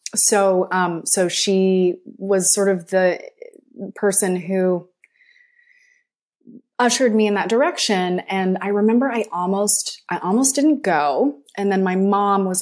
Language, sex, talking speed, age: English, female, 140 wpm, 20-39